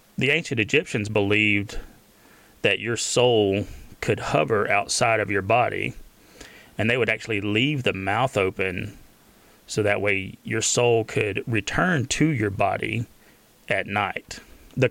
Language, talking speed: English, 135 wpm